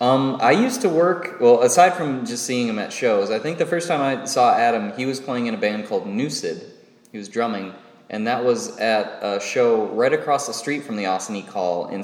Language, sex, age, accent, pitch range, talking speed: English, male, 20-39, American, 100-130 Hz, 235 wpm